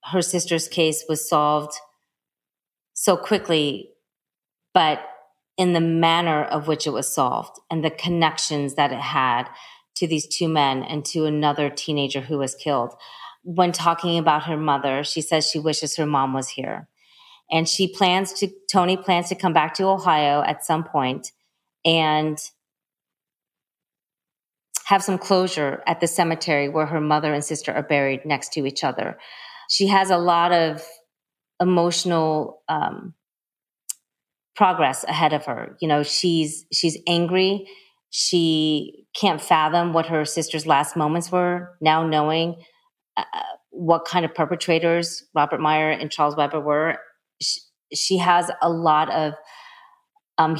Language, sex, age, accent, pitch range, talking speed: English, female, 30-49, American, 150-180 Hz, 145 wpm